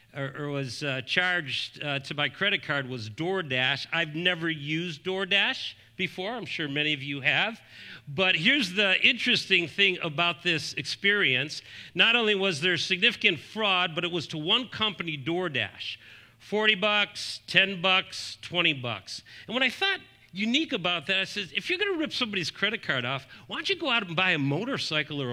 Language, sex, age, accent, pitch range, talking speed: English, male, 50-69, American, 125-185 Hz, 180 wpm